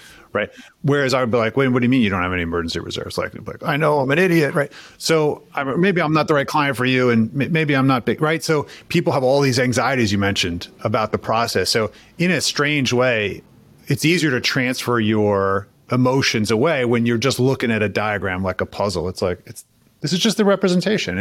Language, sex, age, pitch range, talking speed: English, male, 30-49, 105-145 Hz, 225 wpm